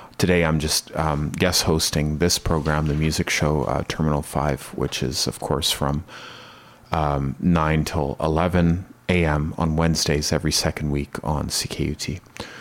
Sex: male